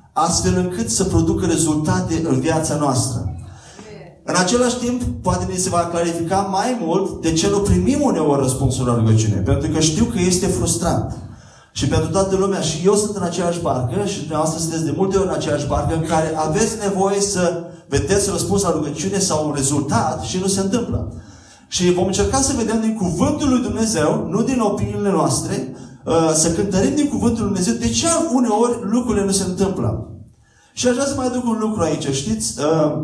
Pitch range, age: 150-200 Hz, 30-49